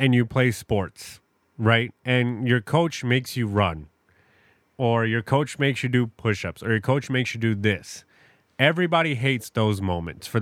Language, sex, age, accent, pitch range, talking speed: English, male, 30-49, American, 105-135 Hz, 175 wpm